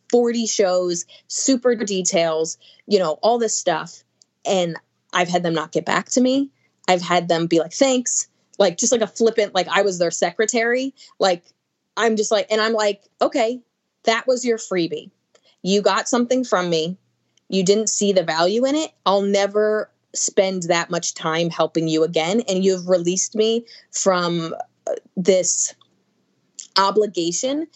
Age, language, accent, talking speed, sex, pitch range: 20-39, English, American, 160 wpm, female, 170-215 Hz